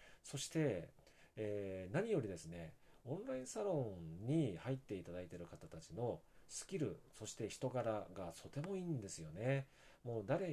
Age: 40-59